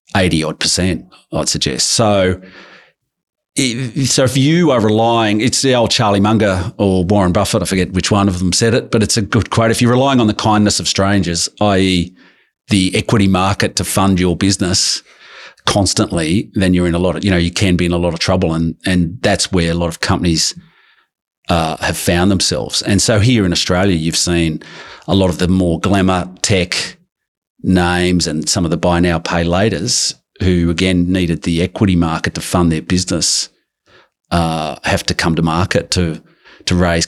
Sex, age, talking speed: male, 40-59, 190 wpm